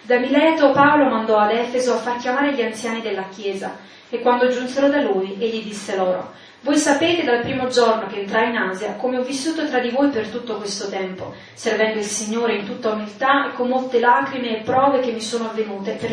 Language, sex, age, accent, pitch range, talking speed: English, female, 30-49, Italian, 220-260 Hz, 210 wpm